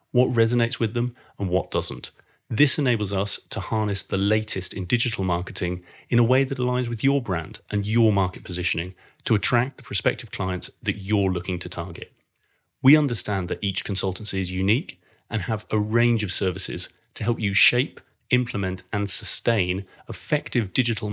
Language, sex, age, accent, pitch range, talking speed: English, male, 30-49, British, 95-115 Hz, 175 wpm